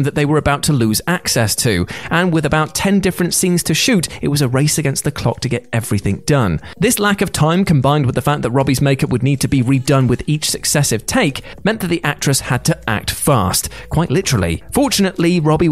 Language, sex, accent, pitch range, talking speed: English, male, British, 125-170 Hz, 225 wpm